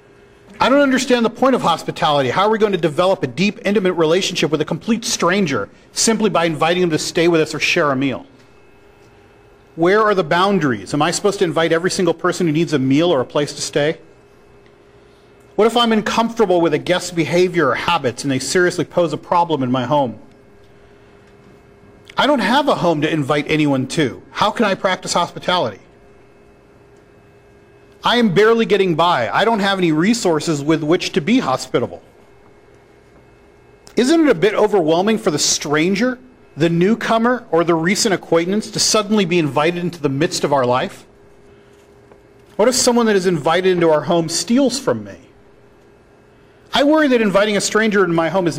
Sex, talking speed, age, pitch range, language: male, 185 wpm, 40-59, 160-210 Hz, English